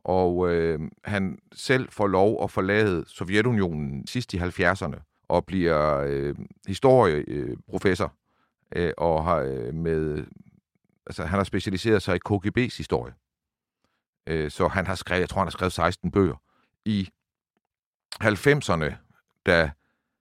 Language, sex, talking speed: Danish, male, 125 wpm